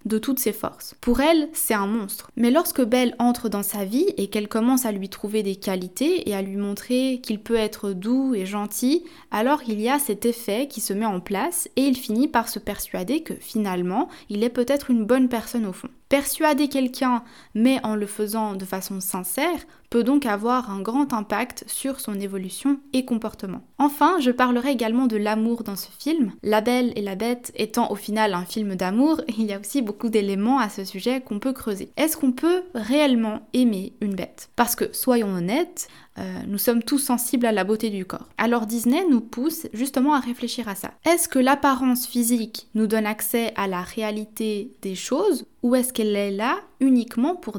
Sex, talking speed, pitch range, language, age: female, 205 wpm, 210-260 Hz, French, 20-39